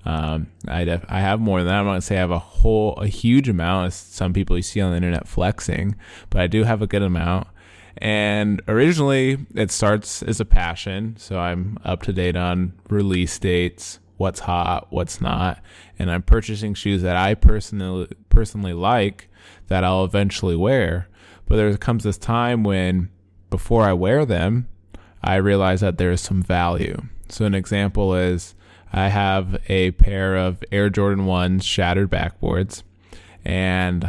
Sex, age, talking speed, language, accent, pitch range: male, 20-39, 170 wpm, English, American, 90-105 Hz